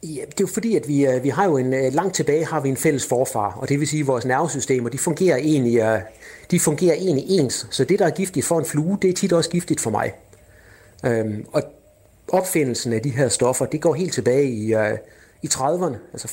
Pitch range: 115-155 Hz